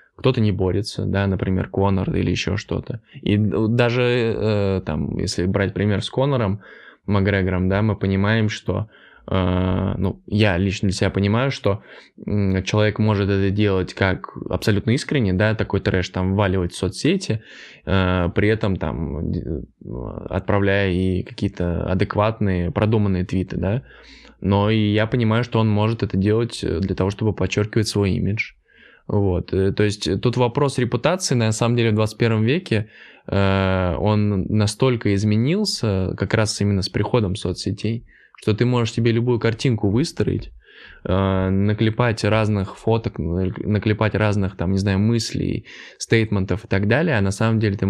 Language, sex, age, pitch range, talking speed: Russian, male, 20-39, 95-110 Hz, 145 wpm